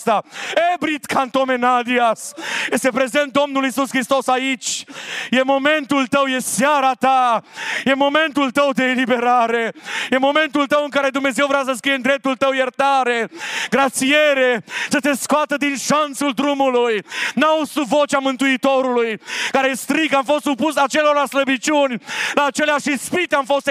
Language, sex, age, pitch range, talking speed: Romanian, male, 40-59, 255-290 Hz, 140 wpm